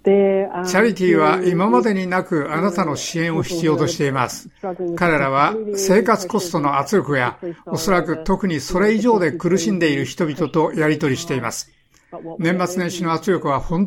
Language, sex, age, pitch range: Japanese, male, 60-79, 150-190 Hz